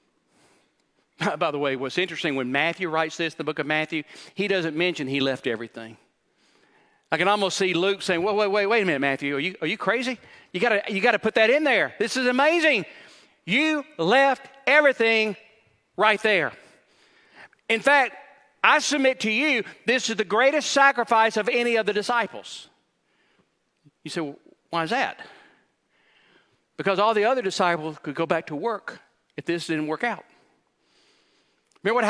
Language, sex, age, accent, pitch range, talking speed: English, male, 40-59, American, 195-255 Hz, 170 wpm